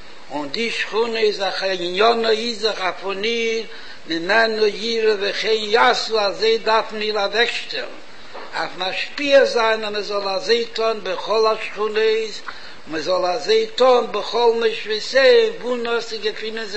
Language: Hebrew